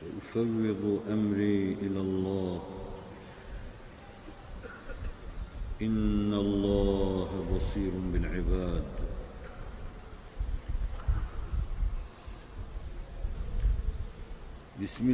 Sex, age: male, 50-69